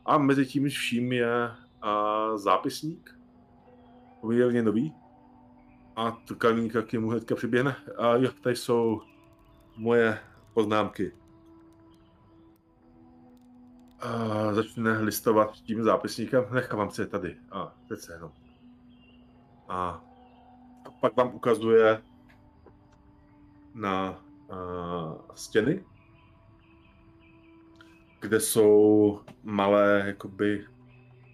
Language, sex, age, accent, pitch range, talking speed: Czech, male, 30-49, native, 100-125 Hz, 80 wpm